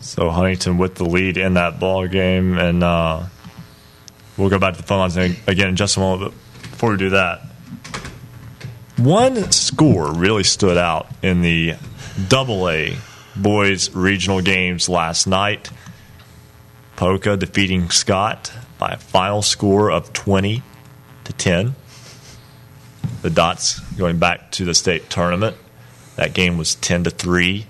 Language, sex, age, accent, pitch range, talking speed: English, male, 30-49, American, 90-105 Hz, 145 wpm